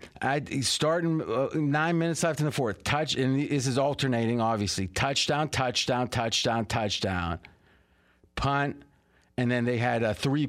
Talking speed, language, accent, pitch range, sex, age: 155 wpm, English, American, 115-165 Hz, male, 40-59